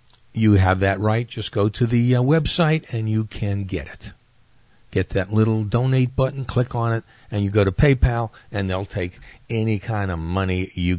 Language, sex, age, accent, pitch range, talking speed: English, male, 50-69, American, 100-120 Hz, 195 wpm